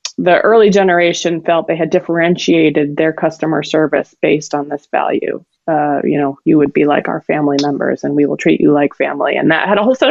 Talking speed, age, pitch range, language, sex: 220 wpm, 20-39, 175-210 Hz, English, female